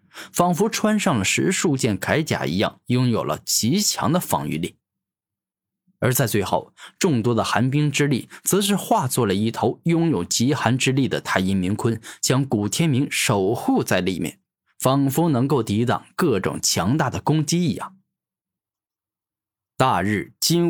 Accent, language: native, Chinese